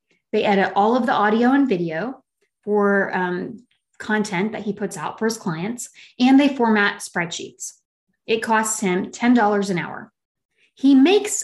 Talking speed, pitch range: 155 wpm, 200-260 Hz